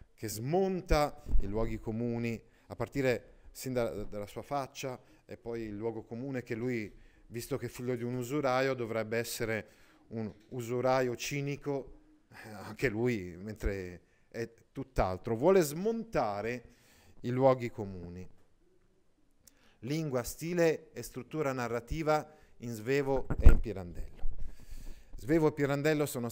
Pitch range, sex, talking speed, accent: 110-140 Hz, male, 125 wpm, native